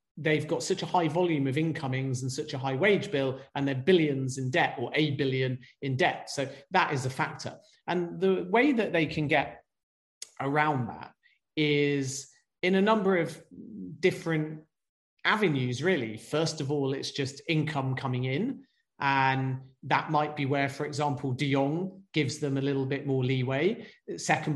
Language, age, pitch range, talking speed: English, 40-59, 140-155 Hz, 175 wpm